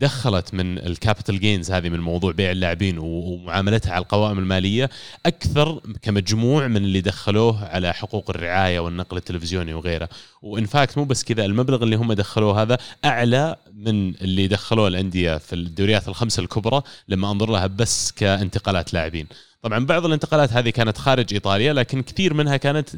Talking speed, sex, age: 155 wpm, male, 30-49